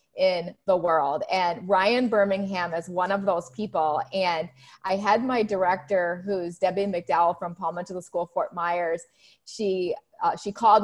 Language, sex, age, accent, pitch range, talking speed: English, female, 30-49, American, 175-215 Hz, 165 wpm